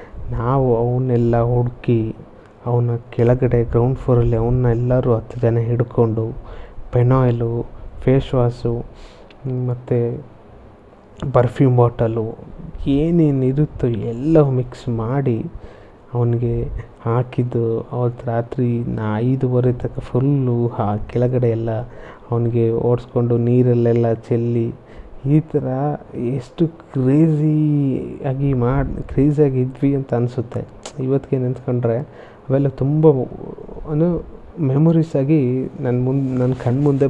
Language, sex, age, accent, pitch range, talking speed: Kannada, male, 30-49, native, 120-140 Hz, 85 wpm